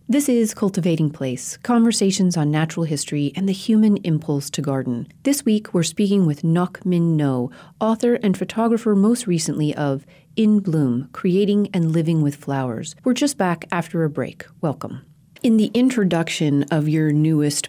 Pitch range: 145-180 Hz